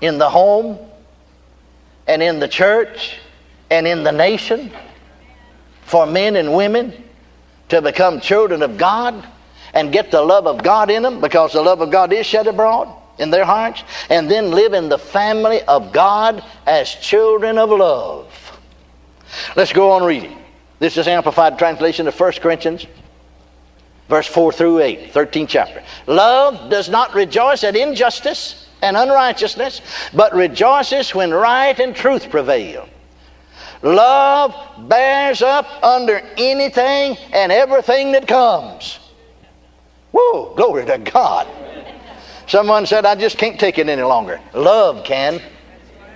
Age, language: 60-79, English